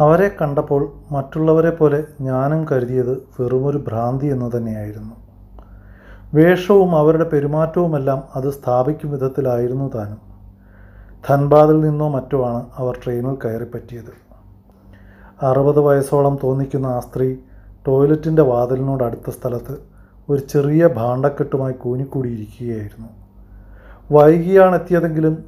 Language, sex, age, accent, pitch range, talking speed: Malayalam, male, 30-49, native, 120-150 Hz, 90 wpm